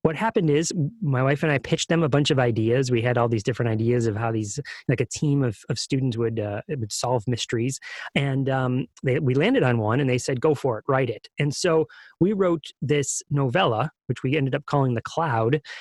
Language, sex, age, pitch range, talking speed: English, male, 30-49, 125-155 Hz, 235 wpm